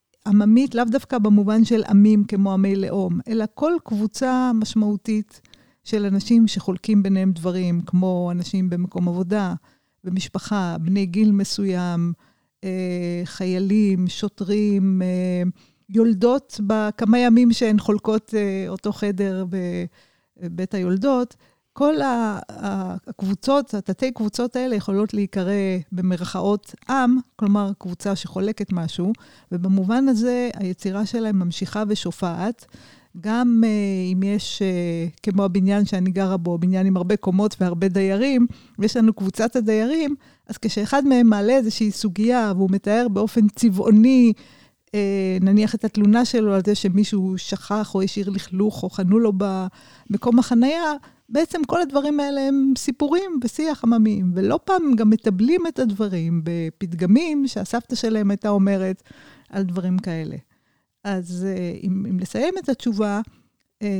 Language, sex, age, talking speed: Hebrew, female, 50-69, 120 wpm